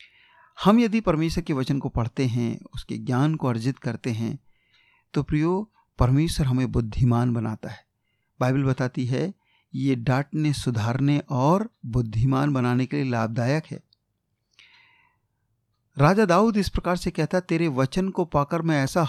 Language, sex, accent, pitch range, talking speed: Hindi, male, native, 130-180 Hz, 145 wpm